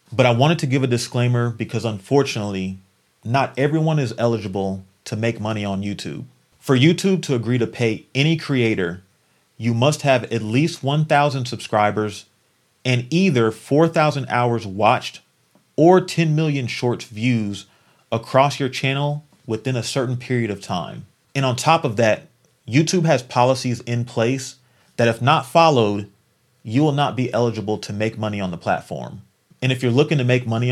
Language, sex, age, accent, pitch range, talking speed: English, male, 30-49, American, 110-140 Hz, 165 wpm